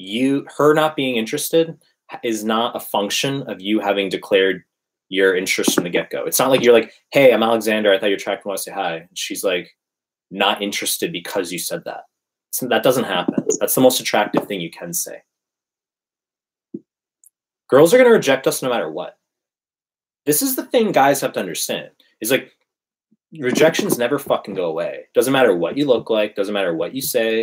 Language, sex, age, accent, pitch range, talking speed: English, male, 20-39, American, 110-165 Hz, 195 wpm